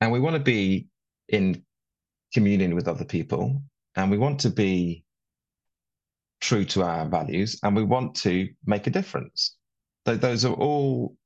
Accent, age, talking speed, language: British, 30-49, 150 wpm, English